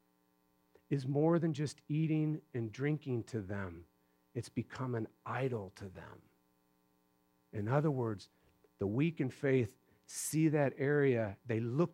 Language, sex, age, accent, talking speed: English, male, 50-69, American, 135 wpm